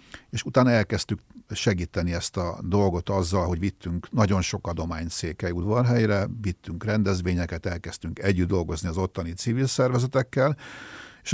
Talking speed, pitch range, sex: 125 wpm, 90-120 Hz, male